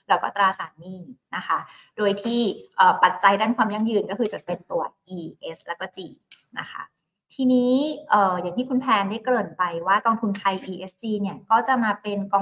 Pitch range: 185-225 Hz